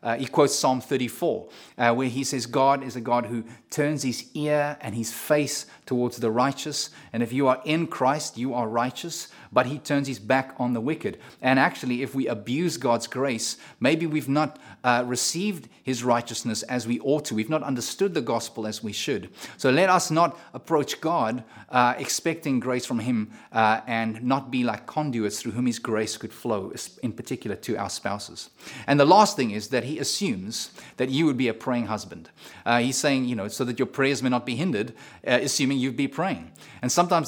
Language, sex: English, male